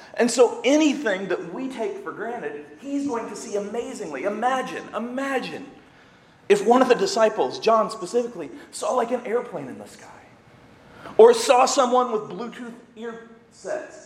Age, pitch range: 40-59, 215-255 Hz